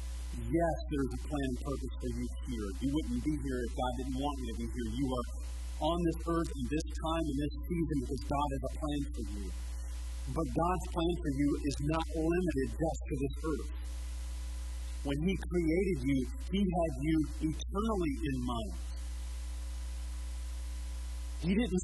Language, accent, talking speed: English, American, 175 wpm